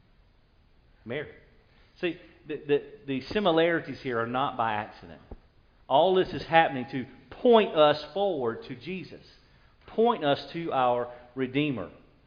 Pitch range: 115-155 Hz